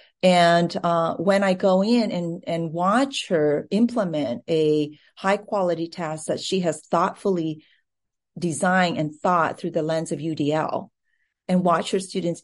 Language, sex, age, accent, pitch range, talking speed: English, female, 40-59, American, 165-205 Hz, 145 wpm